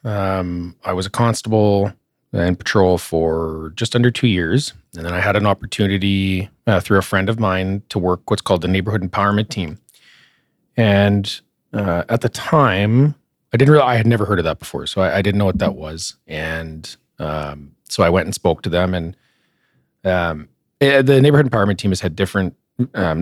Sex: male